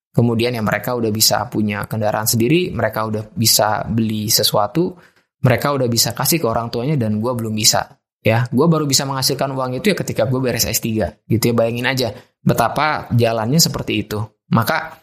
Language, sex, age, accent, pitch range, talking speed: Indonesian, male, 20-39, native, 115-140 Hz, 180 wpm